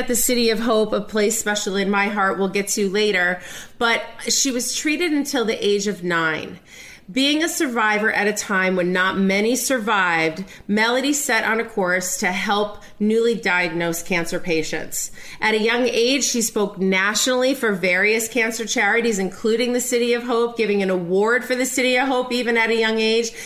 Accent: American